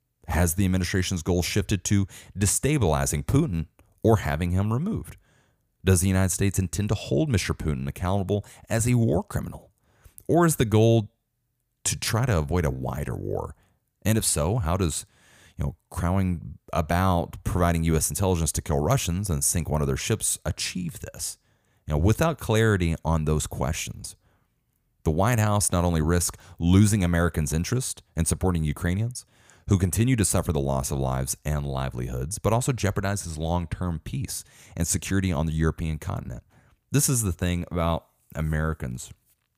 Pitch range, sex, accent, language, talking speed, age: 80-110 Hz, male, American, English, 160 wpm, 30-49